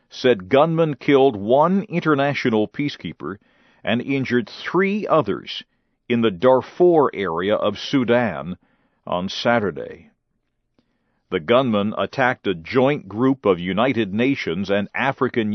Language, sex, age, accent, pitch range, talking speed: English, male, 50-69, American, 120-160 Hz, 110 wpm